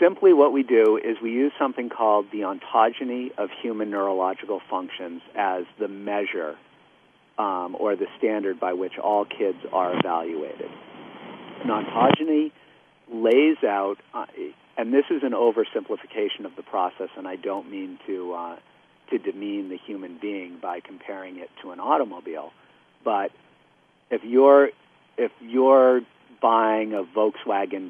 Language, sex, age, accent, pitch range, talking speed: English, male, 40-59, American, 100-135 Hz, 140 wpm